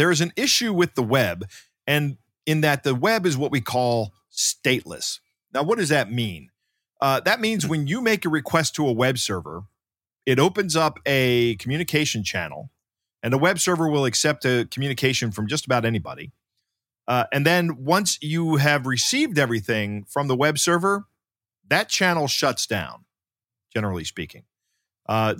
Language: English